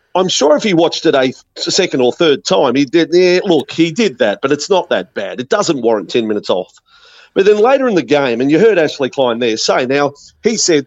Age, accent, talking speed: 40-59, Australian, 250 wpm